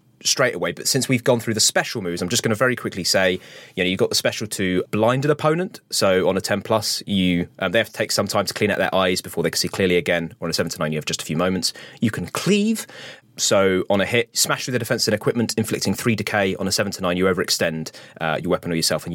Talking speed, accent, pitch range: 290 wpm, British, 95-130 Hz